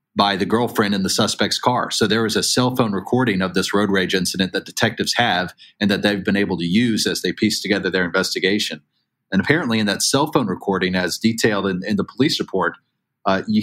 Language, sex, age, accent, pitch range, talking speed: English, male, 30-49, American, 95-125 Hz, 225 wpm